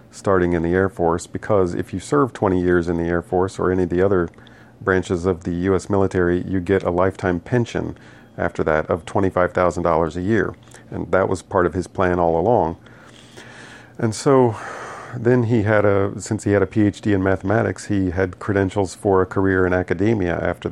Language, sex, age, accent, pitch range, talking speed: English, male, 40-59, American, 90-105 Hz, 195 wpm